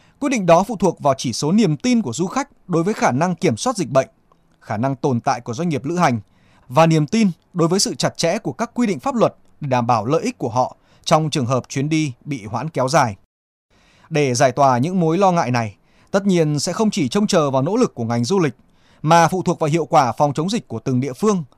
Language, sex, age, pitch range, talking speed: Vietnamese, male, 20-39, 125-180 Hz, 265 wpm